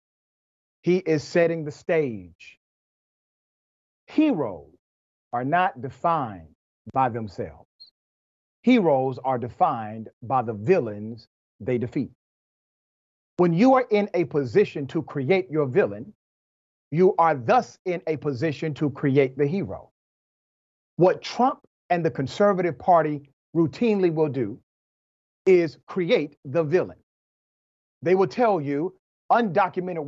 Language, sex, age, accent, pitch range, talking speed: English, male, 40-59, American, 140-190 Hz, 115 wpm